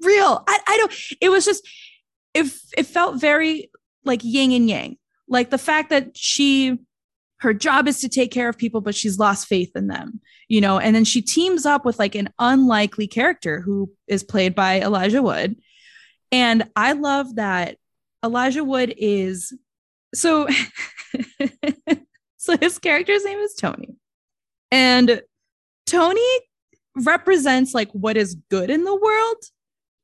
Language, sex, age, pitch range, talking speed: English, female, 20-39, 220-320 Hz, 155 wpm